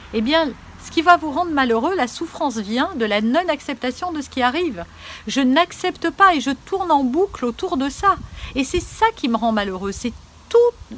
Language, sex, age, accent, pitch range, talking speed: French, female, 50-69, French, 220-335 Hz, 210 wpm